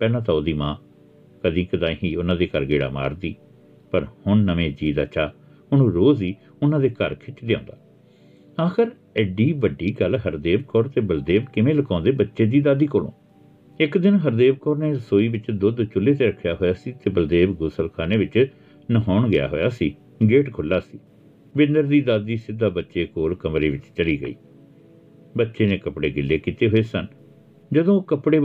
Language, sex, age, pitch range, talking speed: Punjabi, male, 60-79, 95-155 Hz, 165 wpm